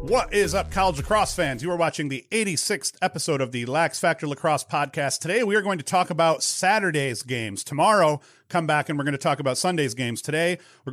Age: 40-59